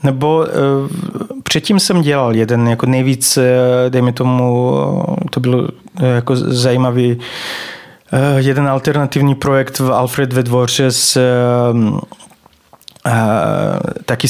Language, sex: Czech, male